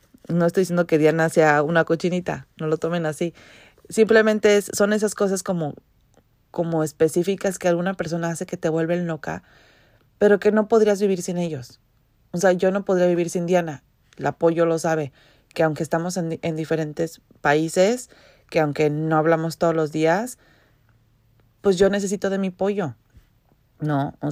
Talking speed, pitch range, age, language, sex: 170 wpm, 150-185 Hz, 30-49, Spanish, female